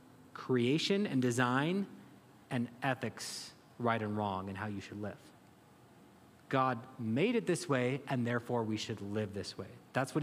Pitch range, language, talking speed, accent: 115-150 Hz, English, 160 wpm, American